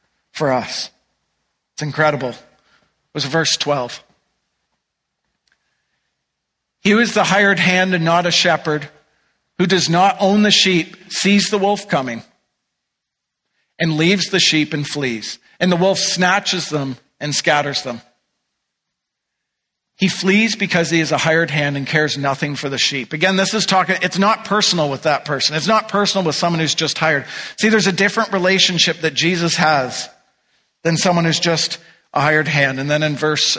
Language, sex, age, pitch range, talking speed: English, male, 50-69, 145-180 Hz, 165 wpm